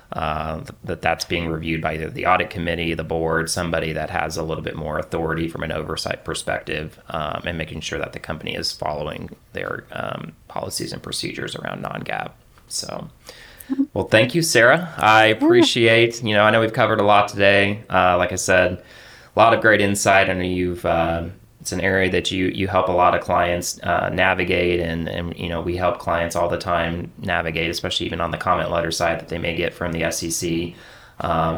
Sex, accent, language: male, American, English